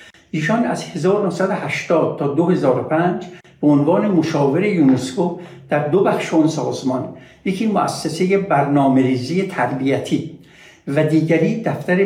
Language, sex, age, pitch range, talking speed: Persian, male, 60-79, 140-180 Hz, 110 wpm